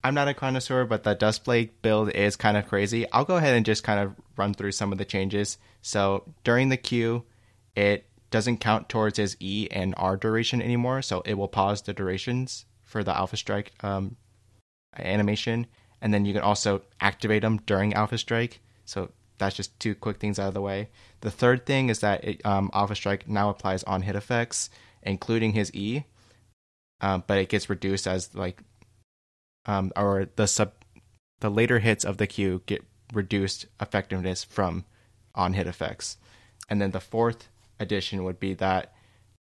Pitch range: 95-110 Hz